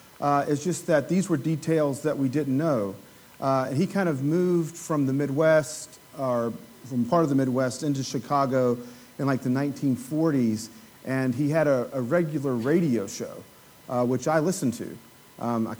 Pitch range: 120-160 Hz